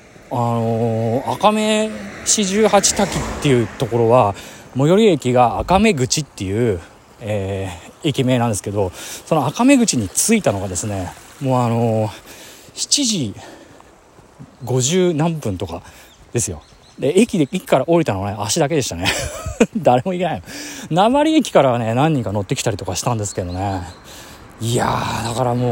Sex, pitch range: male, 105-160 Hz